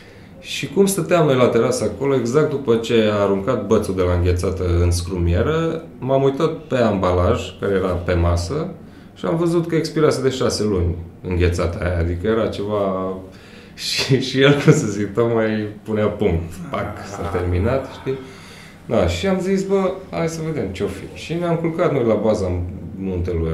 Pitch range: 90-135 Hz